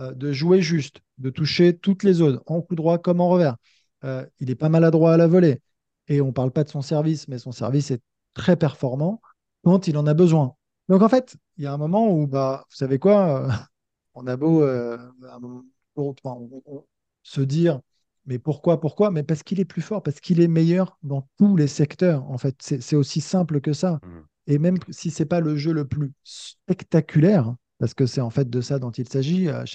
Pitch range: 130-165 Hz